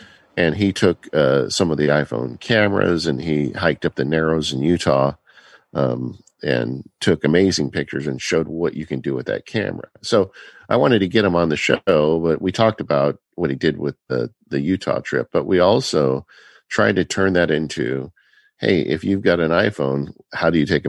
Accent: American